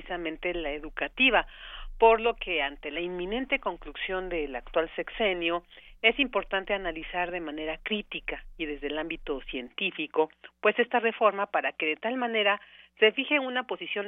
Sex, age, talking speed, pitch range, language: female, 40-59, 155 wpm, 160-215 Hz, Spanish